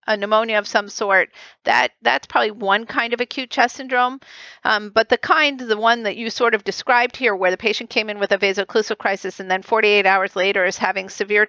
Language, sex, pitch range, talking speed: English, female, 190-235 Hz, 220 wpm